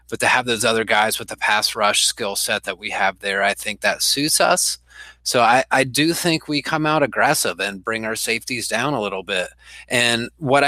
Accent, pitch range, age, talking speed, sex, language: American, 110-130 Hz, 30-49, 225 wpm, male, English